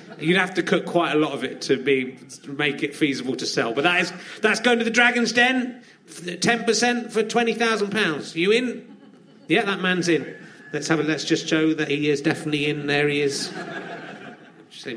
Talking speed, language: 200 wpm, English